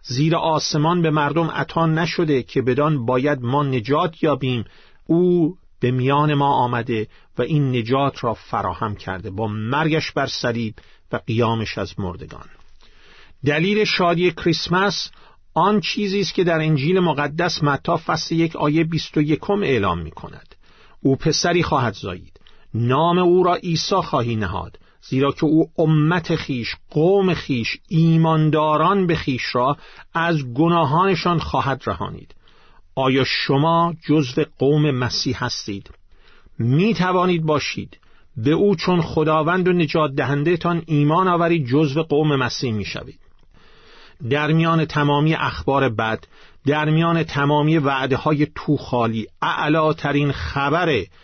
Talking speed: 130 wpm